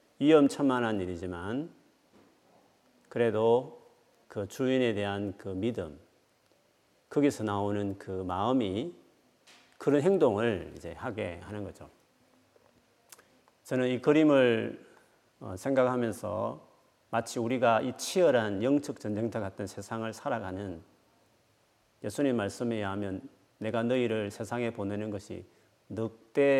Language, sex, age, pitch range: Korean, male, 40-59, 100-125 Hz